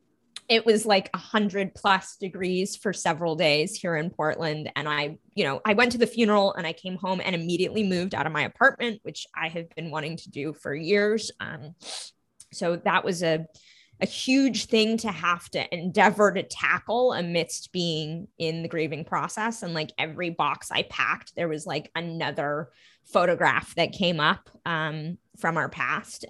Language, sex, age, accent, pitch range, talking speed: English, female, 20-39, American, 155-200 Hz, 185 wpm